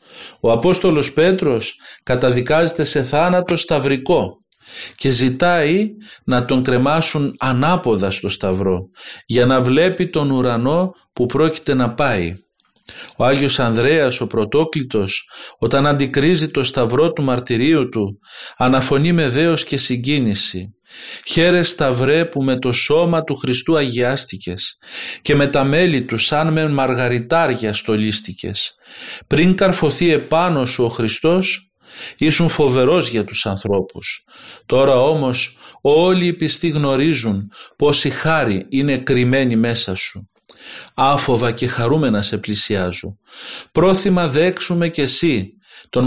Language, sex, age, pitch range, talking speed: Greek, male, 40-59, 120-155 Hz, 120 wpm